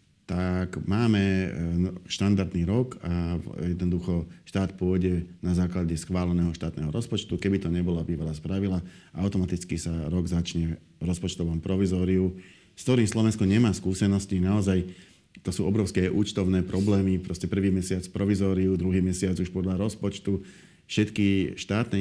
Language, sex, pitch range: Slovak, male, 90-100 Hz